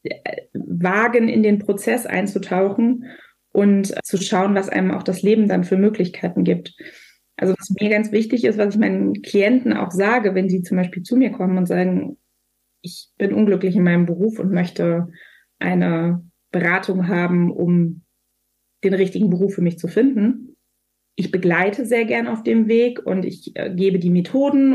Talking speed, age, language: 165 wpm, 20-39, German